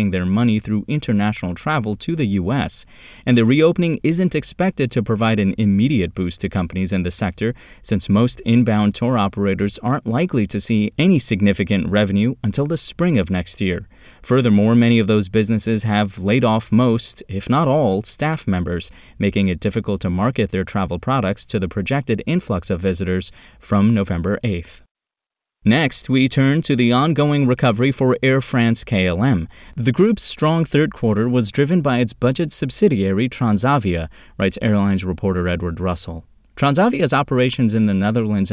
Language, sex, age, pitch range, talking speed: English, male, 20-39, 100-135 Hz, 165 wpm